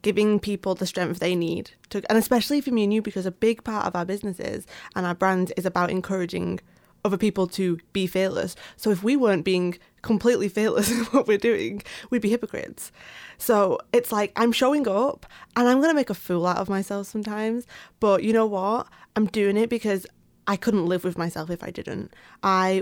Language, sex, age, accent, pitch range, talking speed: English, female, 20-39, British, 185-225 Hz, 210 wpm